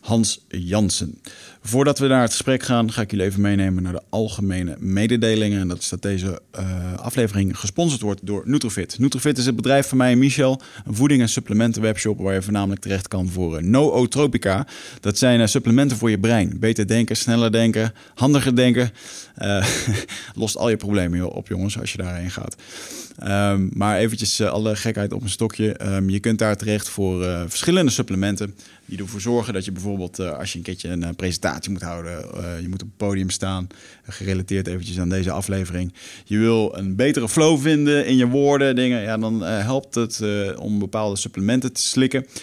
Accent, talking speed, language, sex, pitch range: Dutch, 200 wpm, Dutch, male, 95-120 Hz